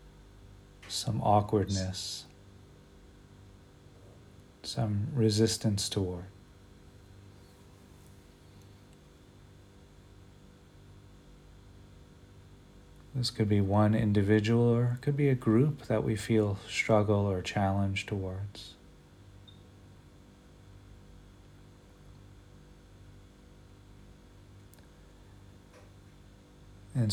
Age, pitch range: 40-59, 95-110 Hz